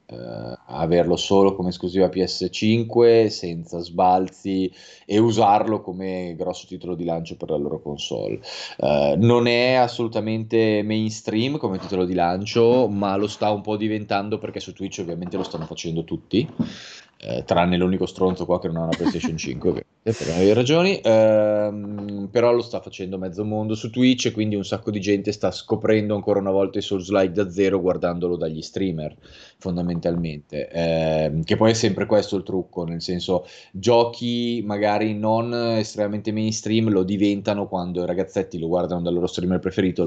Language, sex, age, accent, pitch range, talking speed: Italian, male, 30-49, native, 90-105 Hz, 165 wpm